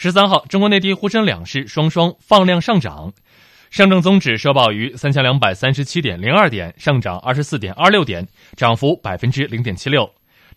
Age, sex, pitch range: 20-39, male, 115-175 Hz